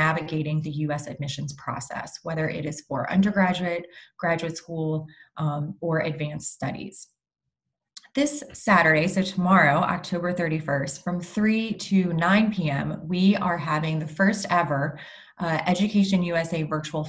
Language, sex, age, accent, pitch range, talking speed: English, female, 20-39, American, 160-195 Hz, 130 wpm